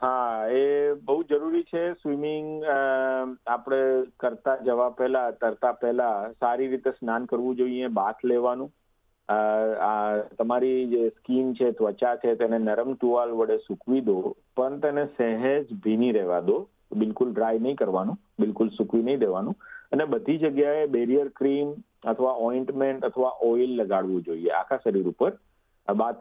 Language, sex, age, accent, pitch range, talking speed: Gujarati, male, 50-69, native, 115-135 Hz, 125 wpm